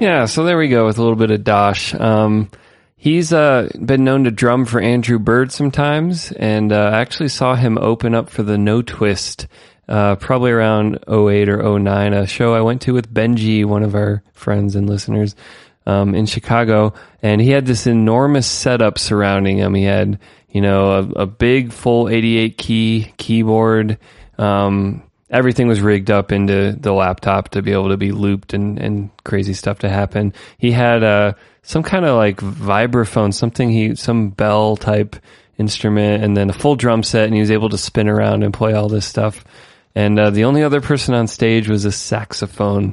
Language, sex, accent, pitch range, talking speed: English, male, American, 100-120 Hz, 195 wpm